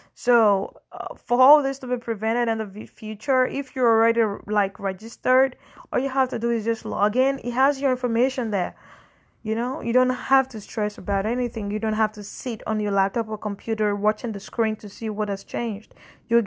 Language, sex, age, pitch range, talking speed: English, female, 20-39, 210-240 Hz, 210 wpm